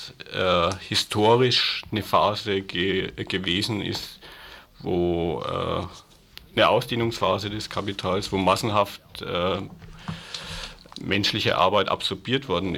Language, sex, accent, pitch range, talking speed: German, male, German, 90-105 Hz, 90 wpm